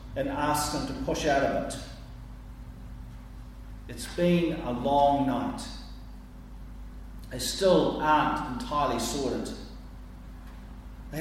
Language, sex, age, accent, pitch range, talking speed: English, male, 40-59, Australian, 115-165 Hz, 100 wpm